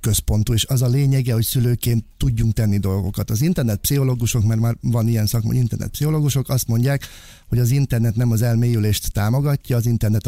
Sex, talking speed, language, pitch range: male, 180 wpm, Hungarian, 105-125 Hz